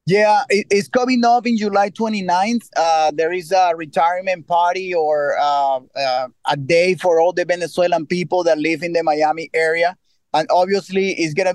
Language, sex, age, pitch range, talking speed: English, male, 30-49, 160-185 Hz, 175 wpm